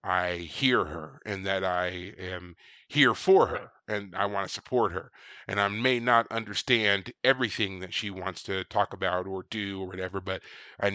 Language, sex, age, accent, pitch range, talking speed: English, male, 30-49, American, 100-150 Hz, 185 wpm